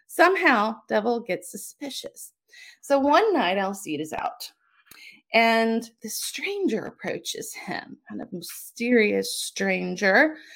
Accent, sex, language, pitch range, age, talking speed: American, female, English, 220-315 Hz, 30-49, 115 wpm